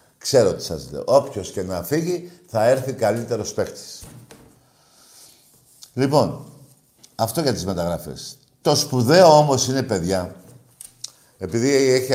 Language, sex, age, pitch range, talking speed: Greek, male, 50-69, 110-140 Hz, 120 wpm